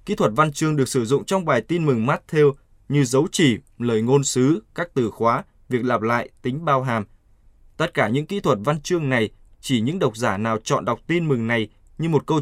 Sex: male